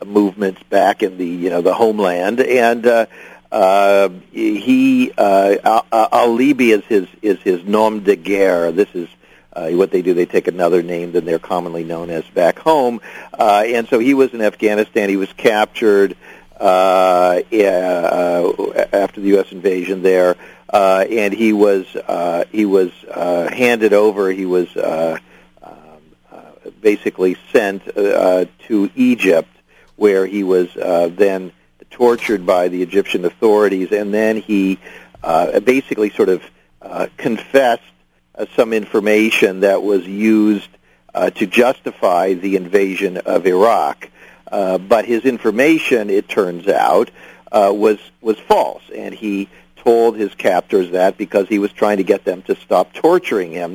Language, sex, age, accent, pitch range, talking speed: English, male, 50-69, American, 90-110 Hz, 150 wpm